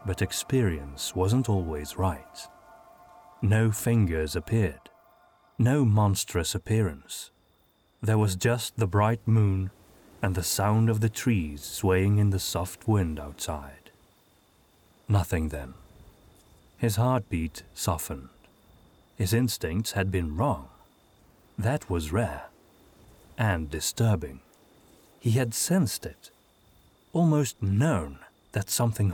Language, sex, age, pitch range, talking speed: English, male, 30-49, 90-115 Hz, 105 wpm